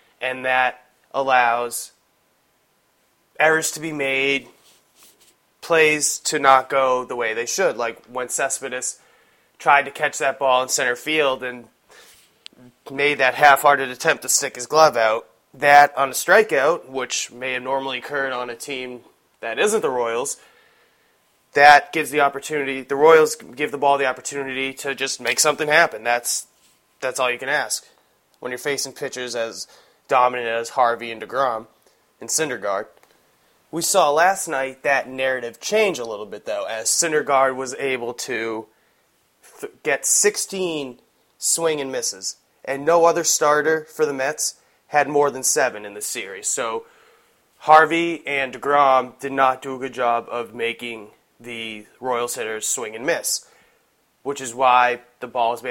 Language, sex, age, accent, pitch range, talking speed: English, male, 20-39, American, 125-150 Hz, 155 wpm